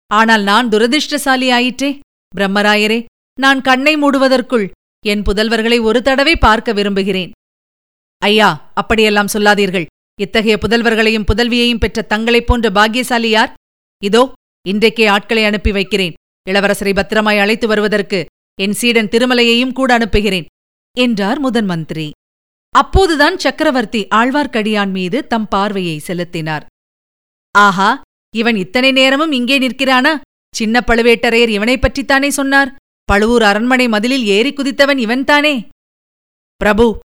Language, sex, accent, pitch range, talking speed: Tamil, female, native, 205-250 Hz, 105 wpm